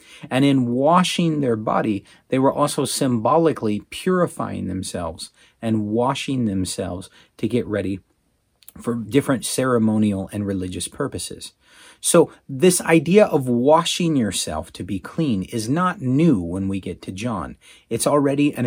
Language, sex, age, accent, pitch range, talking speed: English, male, 40-59, American, 115-160 Hz, 140 wpm